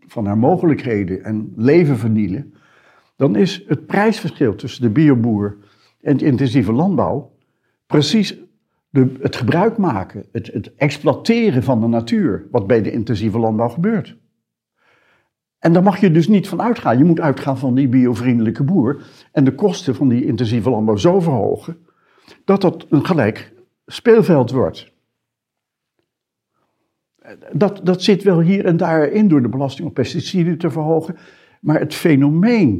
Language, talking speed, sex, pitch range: Dutch, 150 wpm, male, 120-175 Hz